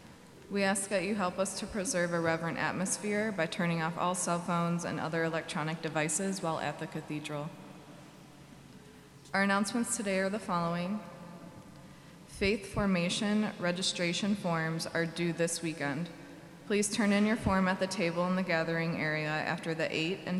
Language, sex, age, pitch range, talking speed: English, female, 20-39, 165-195 Hz, 160 wpm